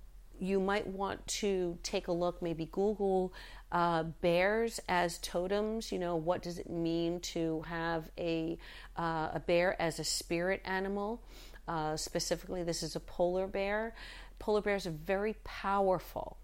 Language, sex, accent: English, female, American